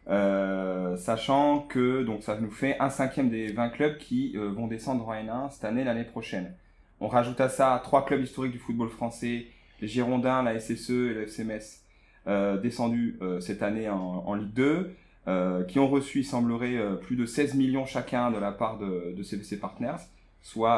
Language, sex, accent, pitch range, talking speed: French, male, French, 105-130 Hz, 200 wpm